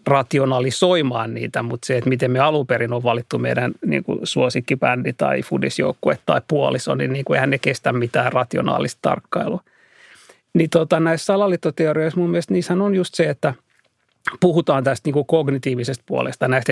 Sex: male